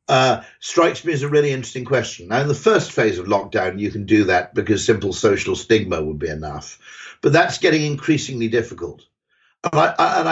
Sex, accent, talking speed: male, British, 205 wpm